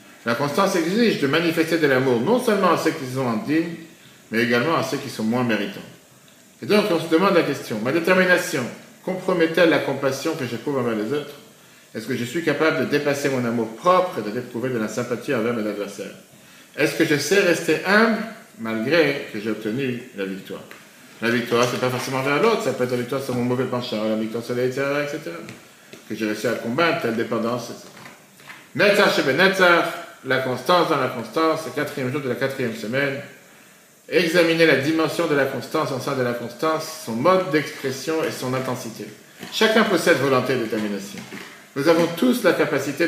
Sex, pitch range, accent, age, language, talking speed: male, 125-170 Hz, French, 50-69, French, 195 wpm